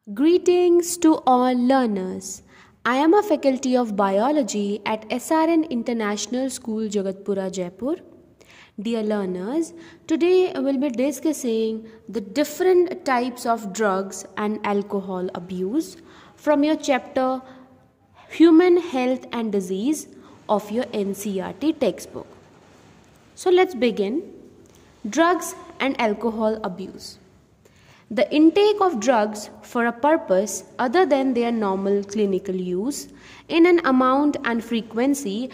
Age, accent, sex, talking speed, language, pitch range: 20-39, Indian, female, 115 wpm, English, 205-295 Hz